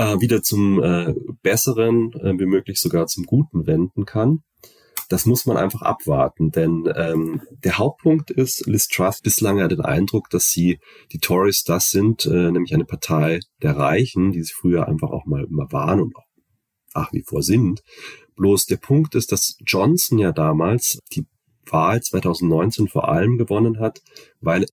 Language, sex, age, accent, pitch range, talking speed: German, male, 30-49, German, 90-115 Hz, 170 wpm